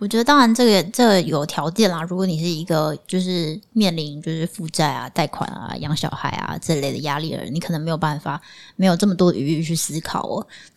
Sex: female